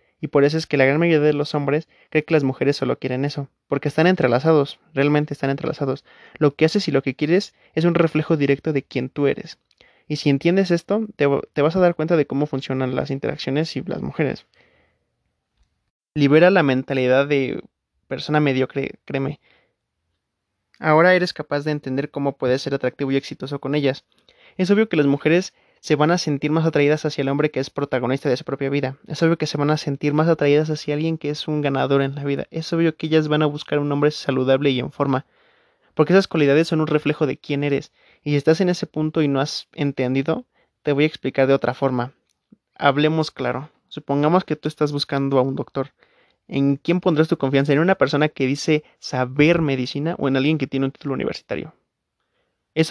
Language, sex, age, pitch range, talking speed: Spanish, male, 20-39, 135-160 Hz, 210 wpm